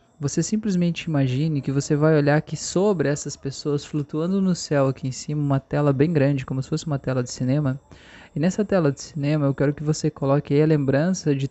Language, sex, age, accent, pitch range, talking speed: Portuguese, male, 20-39, Brazilian, 140-170 Hz, 220 wpm